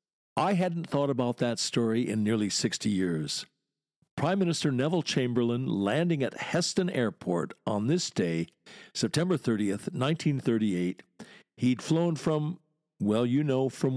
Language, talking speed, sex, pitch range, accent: English, 135 wpm, male, 105-160 Hz, American